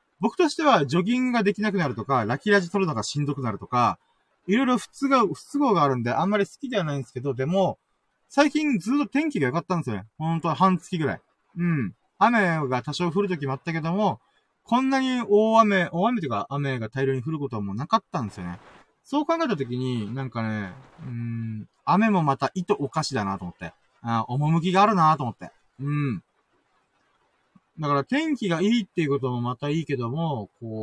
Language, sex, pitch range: Japanese, male, 125-200 Hz